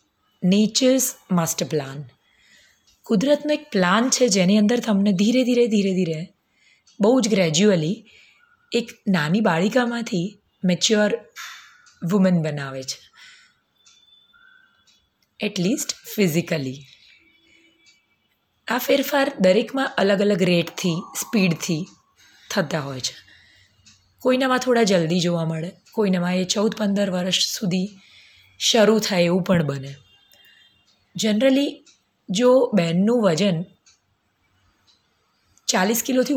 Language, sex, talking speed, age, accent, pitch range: Gujarati, female, 85 wpm, 20-39, native, 175-240 Hz